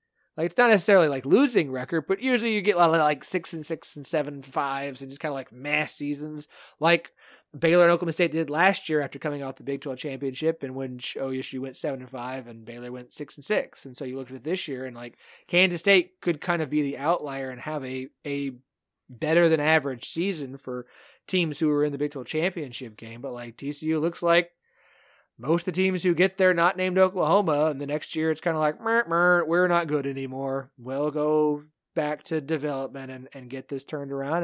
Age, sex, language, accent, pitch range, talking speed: 30-49, male, English, American, 135-175 Hz, 230 wpm